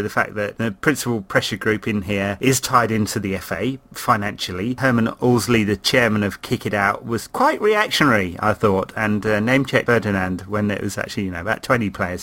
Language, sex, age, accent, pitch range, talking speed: English, male, 30-49, British, 105-130 Hz, 200 wpm